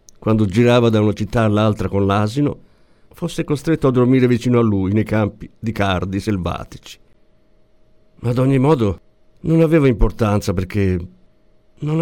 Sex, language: male, Italian